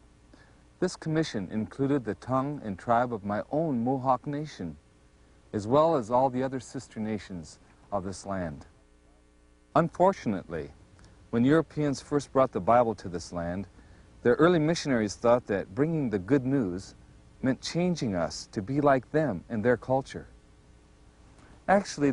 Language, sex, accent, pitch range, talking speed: English, male, American, 85-140 Hz, 145 wpm